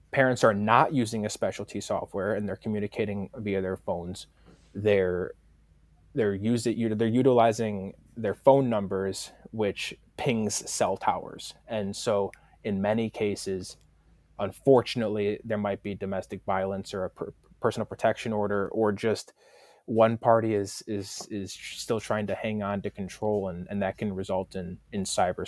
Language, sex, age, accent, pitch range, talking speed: English, male, 20-39, American, 95-110 Hz, 150 wpm